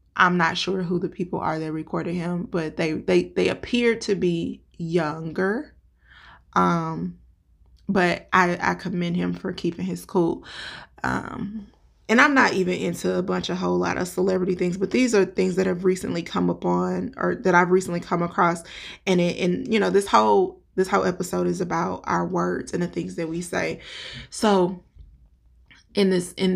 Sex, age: female, 20-39